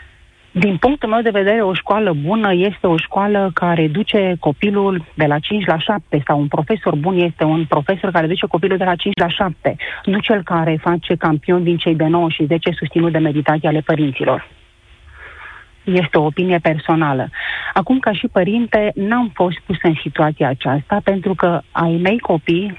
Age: 40-59